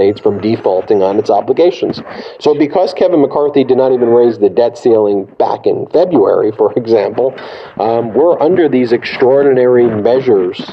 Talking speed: 150 wpm